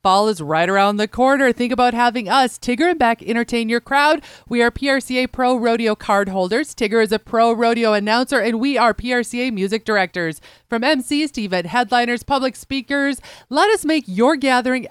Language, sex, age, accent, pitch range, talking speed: English, female, 30-49, American, 205-260 Hz, 190 wpm